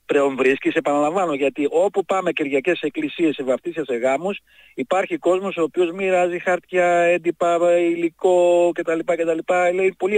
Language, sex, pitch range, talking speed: Greek, male, 140-185 Hz, 135 wpm